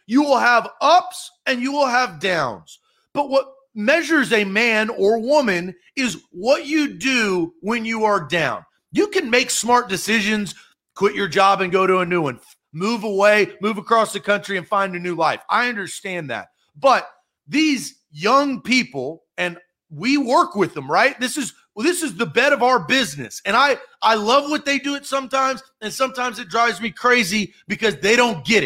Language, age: English, 40-59